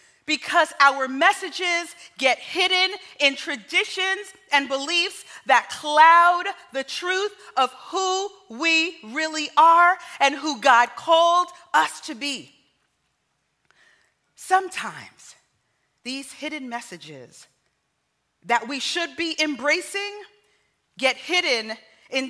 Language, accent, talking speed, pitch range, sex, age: English, American, 100 wpm, 235-335 Hz, female, 40-59